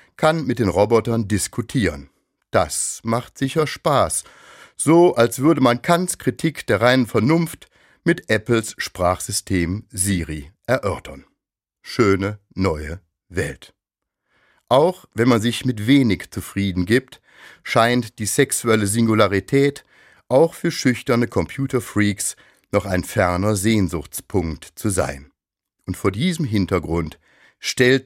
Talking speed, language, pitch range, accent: 115 wpm, German, 95-130 Hz, German